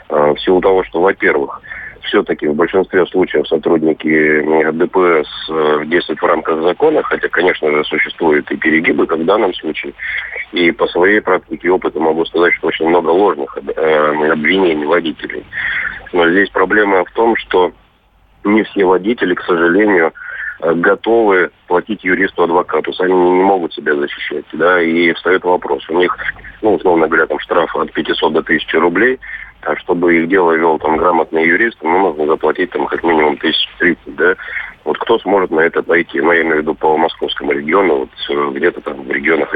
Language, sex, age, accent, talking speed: Russian, male, 30-49, native, 170 wpm